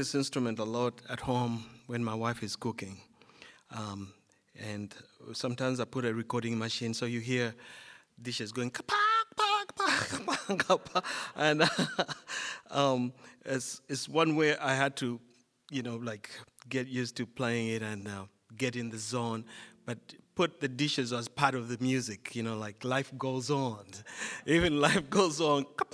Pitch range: 115-145 Hz